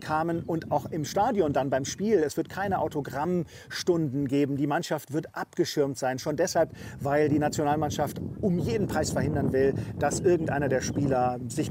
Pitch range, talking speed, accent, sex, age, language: 140-170 Hz, 170 wpm, German, male, 40-59, German